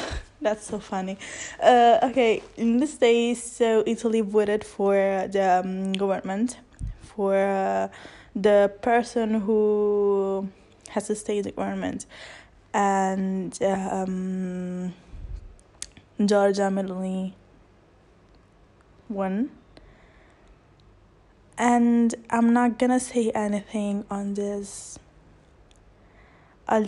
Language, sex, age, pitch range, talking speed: English, female, 10-29, 195-235 Hz, 85 wpm